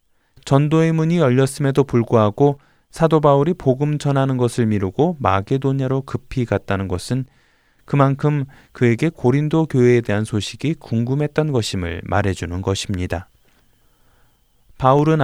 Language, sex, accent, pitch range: Korean, male, native, 105-145 Hz